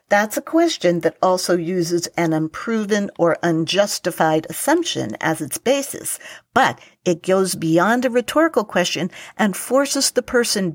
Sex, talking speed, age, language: female, 140 wpm, 50-69, English